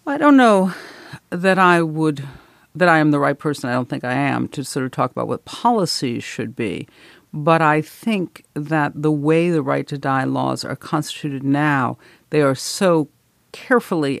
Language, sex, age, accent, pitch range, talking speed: English, female, 50-69, American, 140-165 Hz, 185 wpm